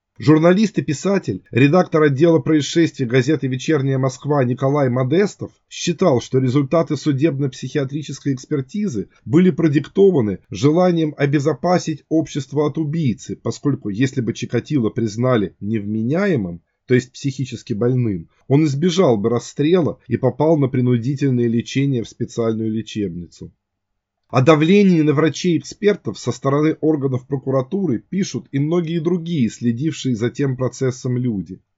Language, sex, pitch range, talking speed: Russian, male, 120-160 Hz, 115 wpm